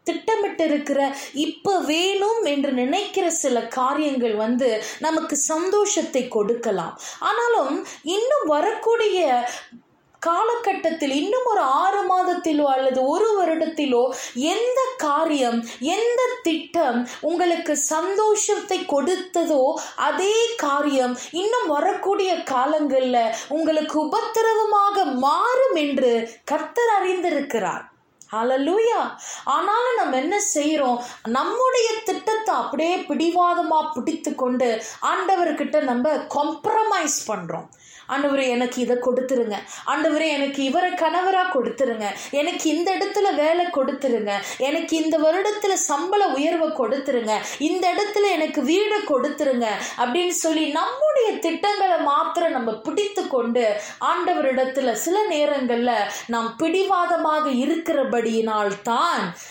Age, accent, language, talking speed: 20-39, native, Tamil, 95 wpm